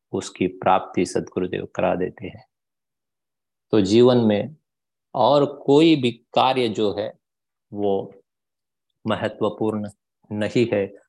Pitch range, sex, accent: 100-125 Hz, male, native